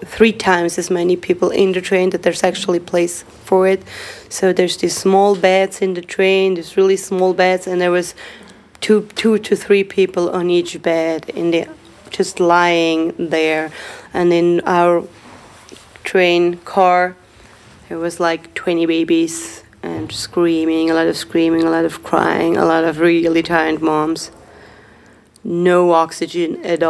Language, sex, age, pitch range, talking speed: English, female, 20-39, 165-185 Hz, 160 wpm